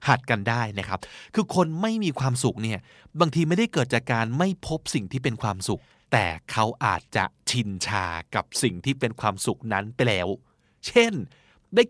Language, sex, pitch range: Thai, male, 110-165 Hz